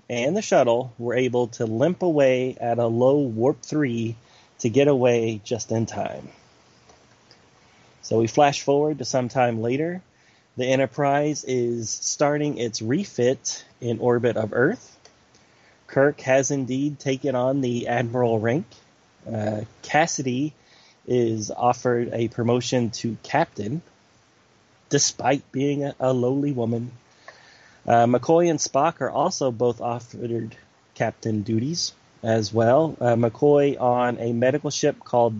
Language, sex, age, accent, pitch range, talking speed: English, male, 30-49, American, 115-140 Hz, 130 wpm